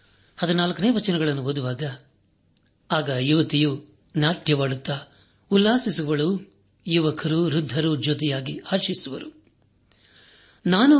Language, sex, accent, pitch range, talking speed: Kannada, male, native, 145-175 Hz, 65 wpm